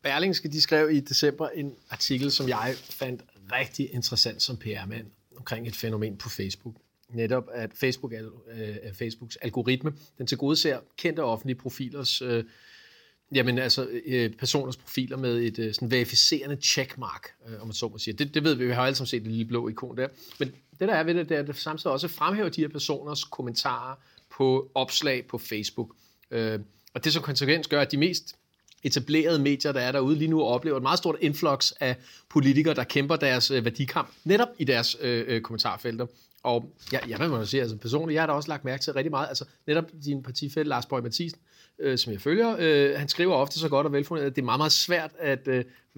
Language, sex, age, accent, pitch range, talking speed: Danish, male, 40-59, native, 125-150 Hz, 200 wpm